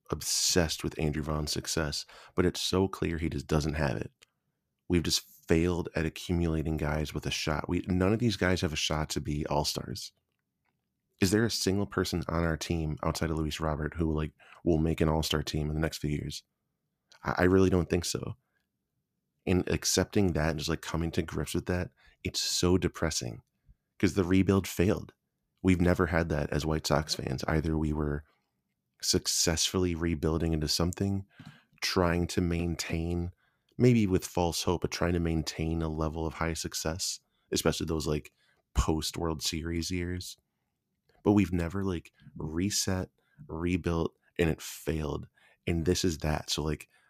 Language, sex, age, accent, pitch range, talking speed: English, male, 30-49, American, 80-90 Hz, 170 wpm